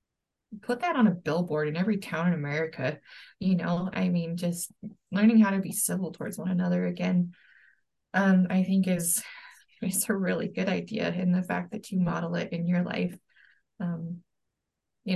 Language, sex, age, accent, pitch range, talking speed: English, female, 20-39, American, 175-210 Hz, 180 wpm